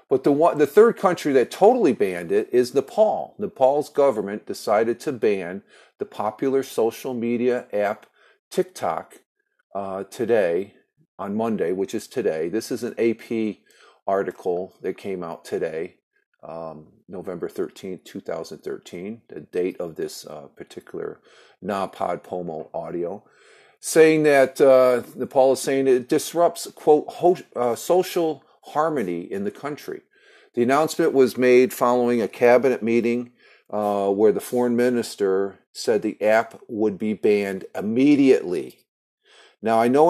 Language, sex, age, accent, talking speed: English, male, 50-69, American, 135 wpm